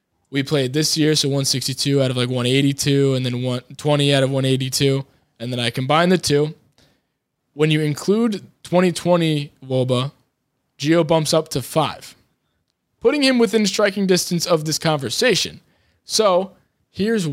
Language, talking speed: English, 145 wpm